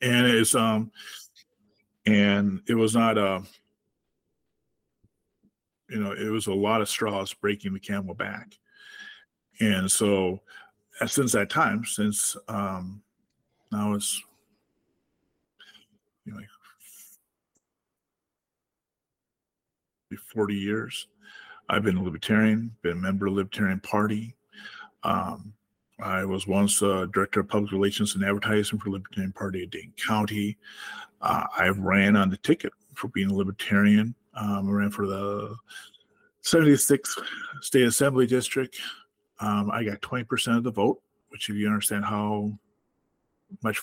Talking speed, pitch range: 130 wpm, 100-110 Hz